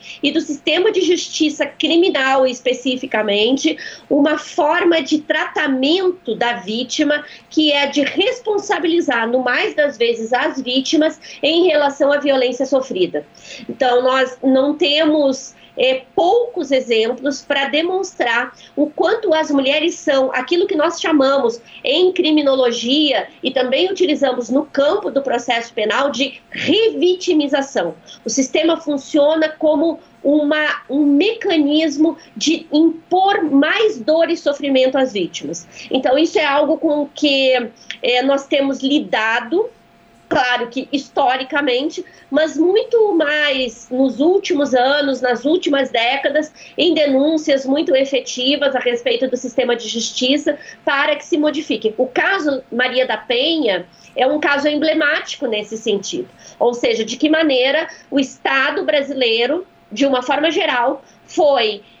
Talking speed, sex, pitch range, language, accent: 125 wpm, female, 260-320 Hz, Portuguese, Brazilian